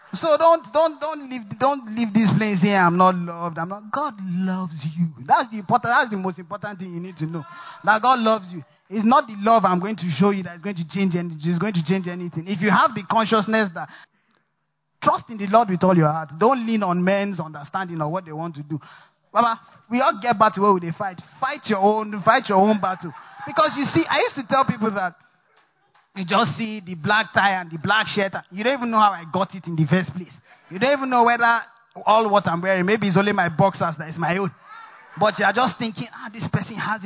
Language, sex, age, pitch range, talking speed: English, male, 20-39, 180-225 Hz, 250 wpm